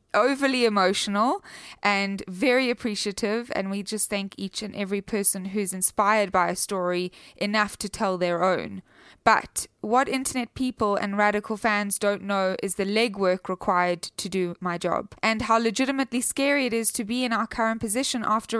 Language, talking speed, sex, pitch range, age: English, 170 wpm, female, 185-225 Hz, 20-39